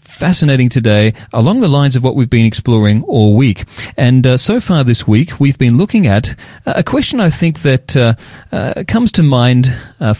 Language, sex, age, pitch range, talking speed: English, male, 30-49, 110-140 Hz, 195 wpm